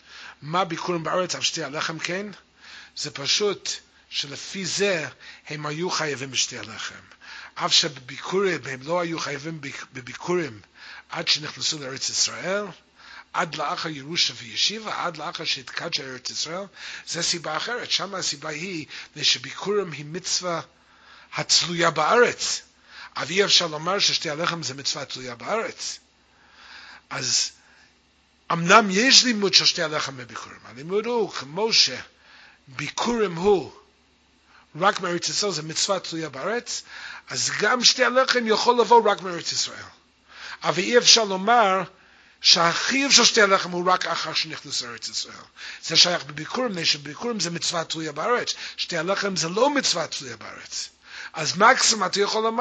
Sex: male